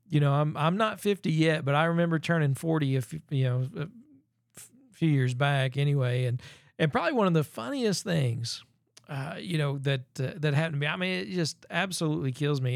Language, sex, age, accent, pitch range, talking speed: English, male, 40-59, American, 130-160 Hz, 205 wpm